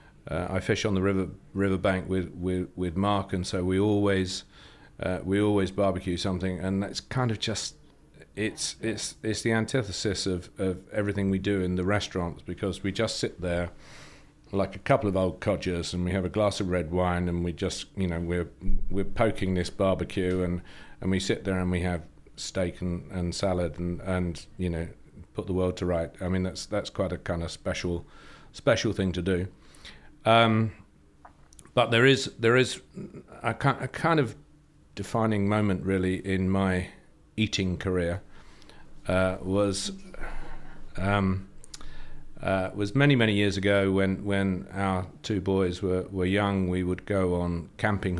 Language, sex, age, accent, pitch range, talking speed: English, male, 40-59, British, 90-100 Hz, 175 wpm